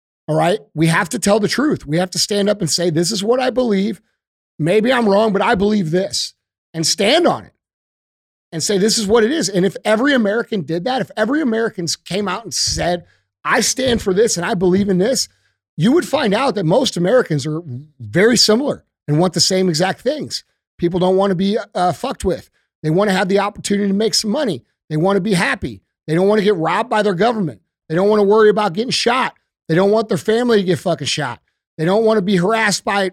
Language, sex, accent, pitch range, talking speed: English, male, American, 175-220 Hz, 240 wpm